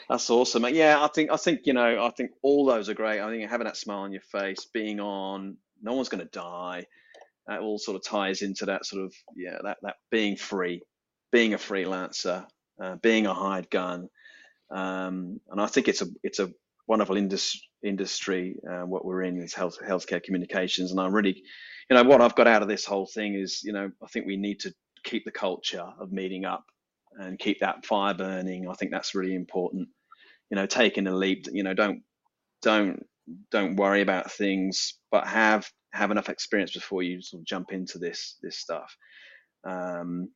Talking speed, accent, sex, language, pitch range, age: 205 wpm, British, male, English, 95-110 Hz, 30-49